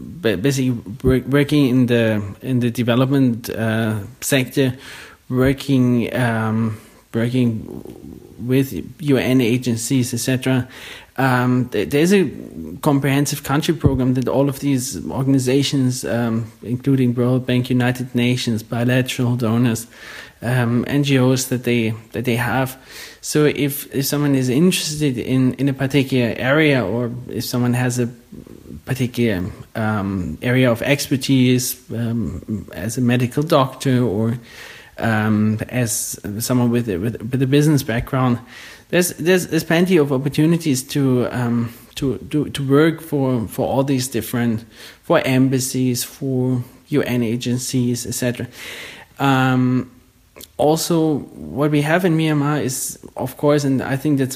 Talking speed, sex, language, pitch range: 130 wpm, male, English, 120-135 Hz